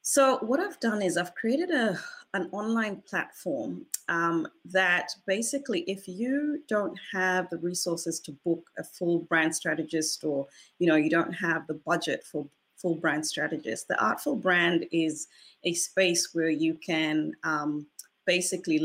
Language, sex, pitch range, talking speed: English, female, 160-195 Hz, 155 wpm